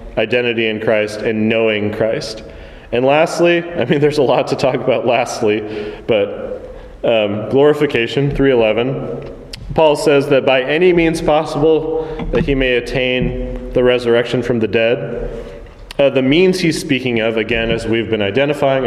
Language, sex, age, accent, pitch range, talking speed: English, male, 30-49, American, 115-145 Hz, 155 wpm